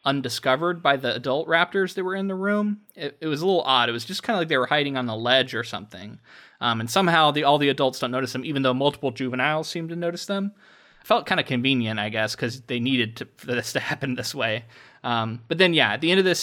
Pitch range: 115-145 Hz